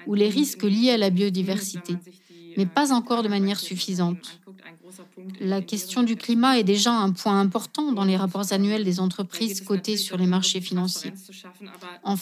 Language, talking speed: French, 165 wpm